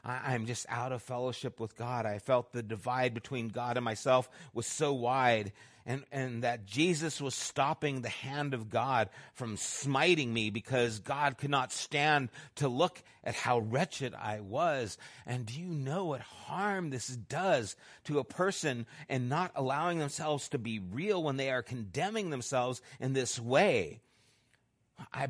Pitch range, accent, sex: 125-185 Hz, American, male